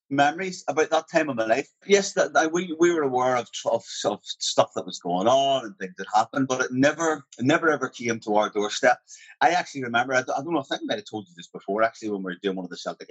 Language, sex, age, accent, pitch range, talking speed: English, male, 30-49, British, 100-130 Hz, 275 wpm